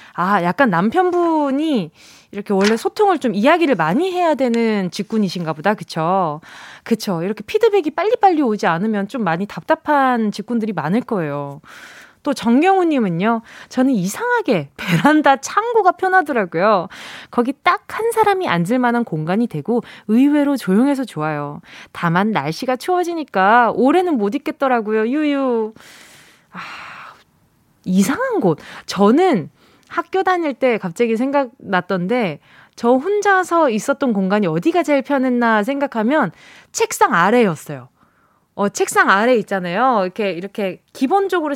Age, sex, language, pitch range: 20-39, female, Korean, 205-310 Hz